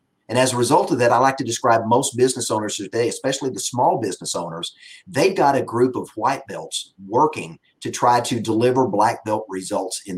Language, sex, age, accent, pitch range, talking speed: English, male, 40-59, American, 105-130 Hz, 205 wpm